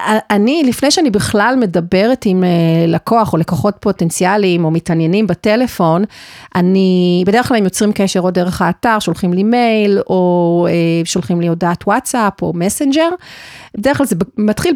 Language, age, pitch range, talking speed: Hebrew, 40-59, 185-240 Hz, 145 wpm